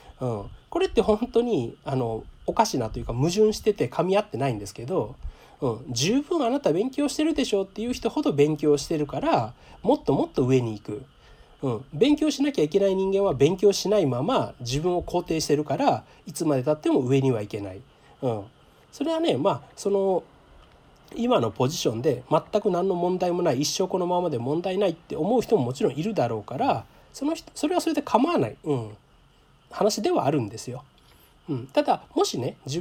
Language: Japanese